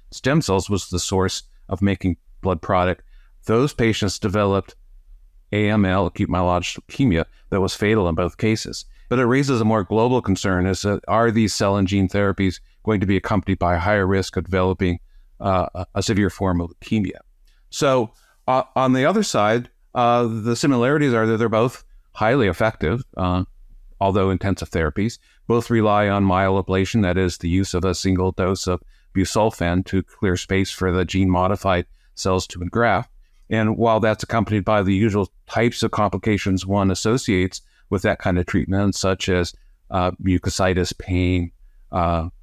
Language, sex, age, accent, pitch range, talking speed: English, male, 50-69, American, 90-110 Hz, 165 wpm